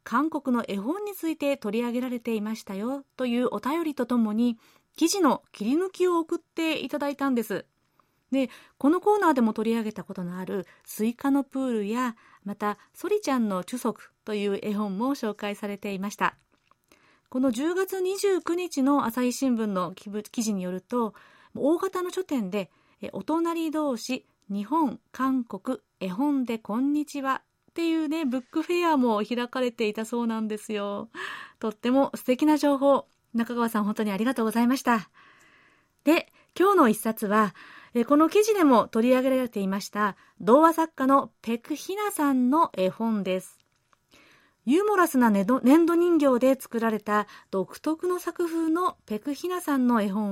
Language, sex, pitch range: Japanese, female, 215-305 Hz